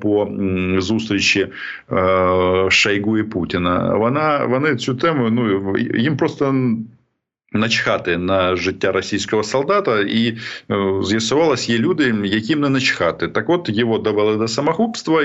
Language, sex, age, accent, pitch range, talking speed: Ukrainian, male, 40-59, native, 100-125 Hz, 120 wpm